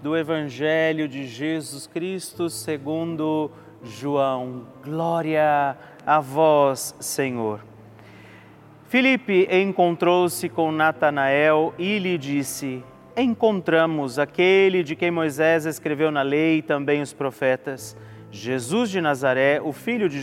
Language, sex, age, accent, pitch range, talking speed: Portuguese, male, 30-49, Brazilian, 140-175 Hz, 105 wpm